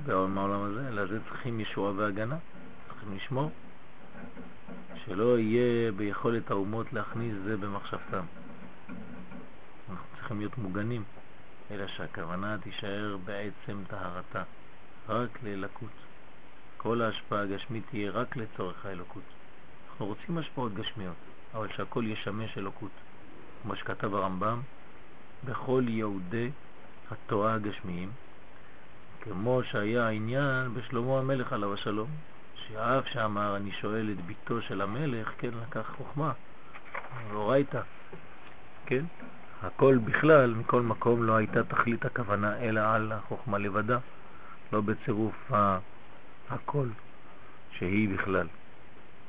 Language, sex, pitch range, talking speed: French, male, 100-120 Hz, 105 wpm